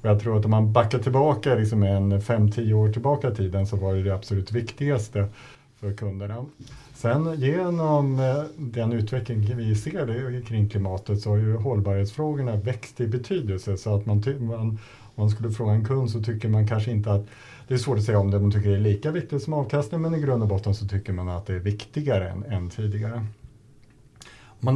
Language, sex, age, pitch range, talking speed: Swedish, male, 50-69, 100-125 Hz, 205 wpm